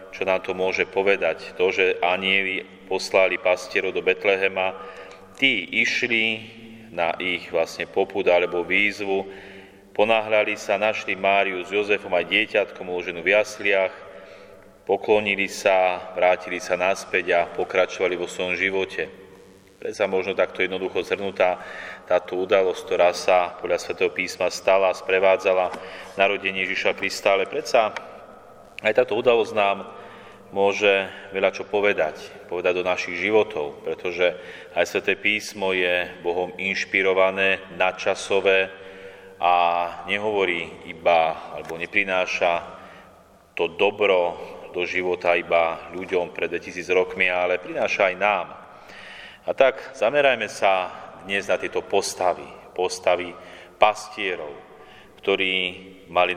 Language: Slovak